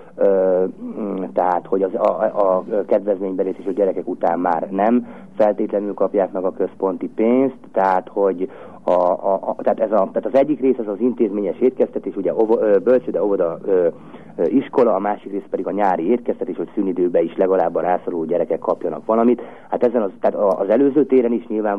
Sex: male